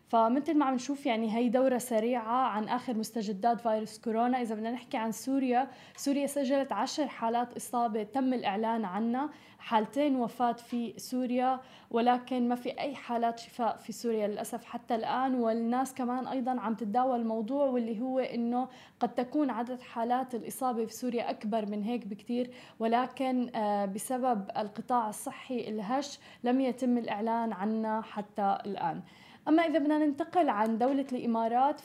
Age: 20-39